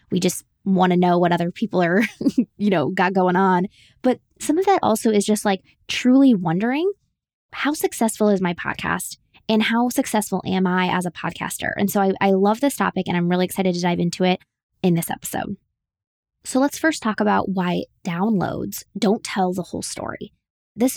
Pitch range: 180-230 Hz